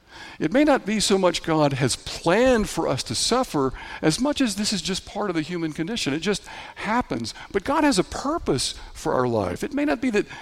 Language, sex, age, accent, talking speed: English, male, 60-79, American, 230 wpm